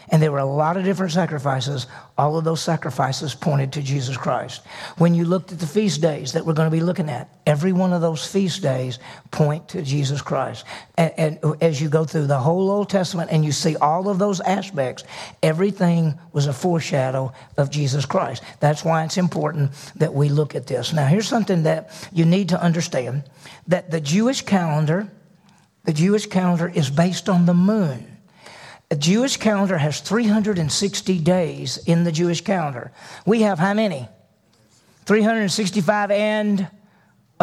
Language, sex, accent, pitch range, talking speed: English, male, American, 155-195 Hz, 170 wpm